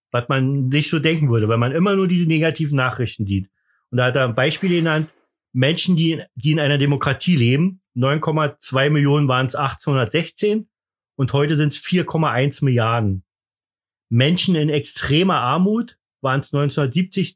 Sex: male